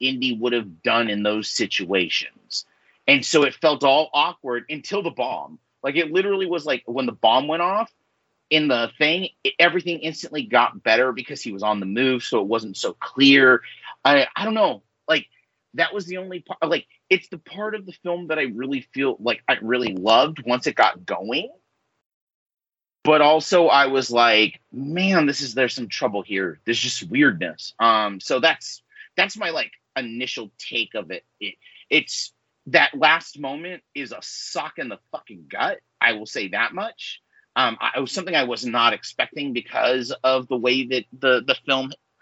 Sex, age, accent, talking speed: male, 30-49, American, 190 wpm